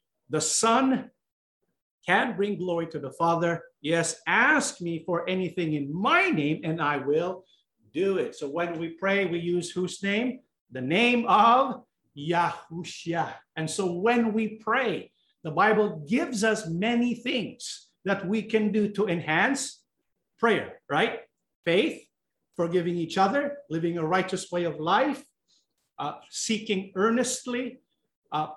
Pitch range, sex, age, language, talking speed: 170-235 Hz, male, 50-69, English, 140 wpm